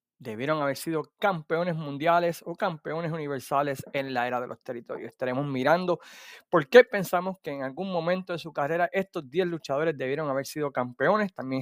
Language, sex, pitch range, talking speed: Spanish, male, 140-190 Hz, 175 wpm